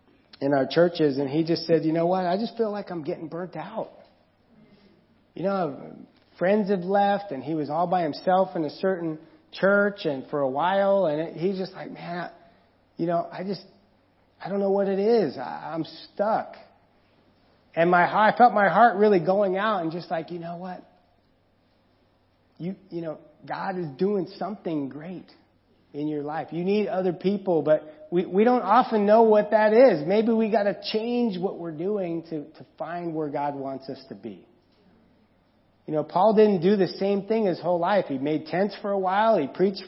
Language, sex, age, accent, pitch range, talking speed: English, male, 30-49, American, 155-200 Hz, 195 wpm